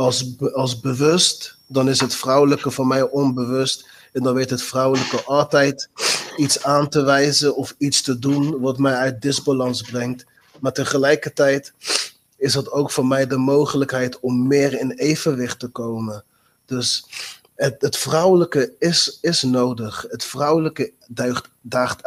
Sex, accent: male, Dutch